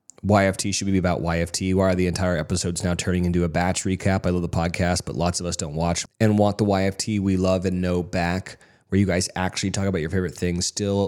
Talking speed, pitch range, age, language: 245 wpm, 90-120 Hz, 30-49, English